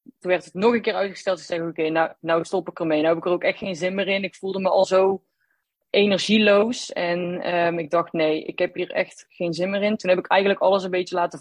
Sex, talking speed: female, 270 wpm